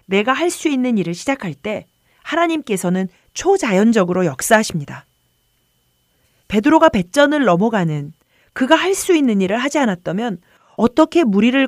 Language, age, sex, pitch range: Korean, 40-59, female, 165-270 Hz